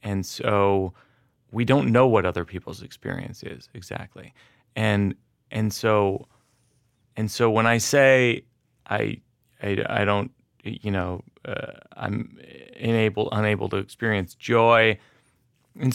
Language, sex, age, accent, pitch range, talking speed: English, male, 30-49, American, 105-125 Hz, 125 wpm